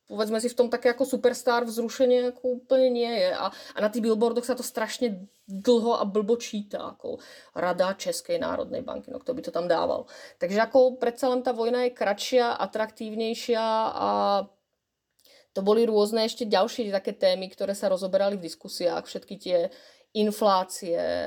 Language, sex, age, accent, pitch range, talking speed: Czech, female, 30-49, native, 200-255 Hz, 165 wpm